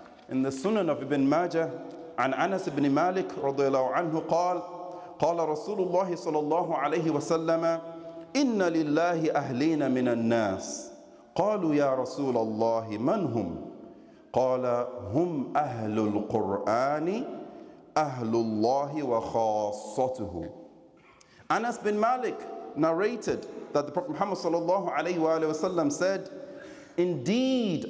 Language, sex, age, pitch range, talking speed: English, male, 40-59, 125-180 Hz, 80 wpm